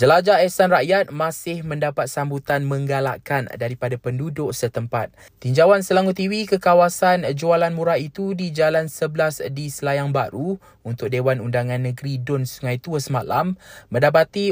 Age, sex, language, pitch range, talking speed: 20-39, male, Malay, 130-170 Hz, 135 wpm